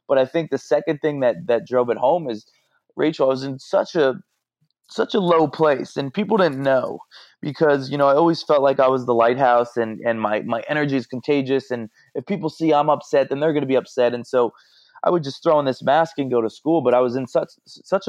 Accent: American